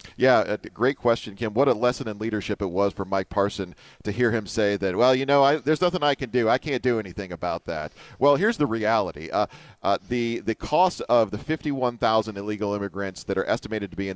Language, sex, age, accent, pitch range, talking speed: English, male, 40-59, American, 100-140 Hz, 235 wpm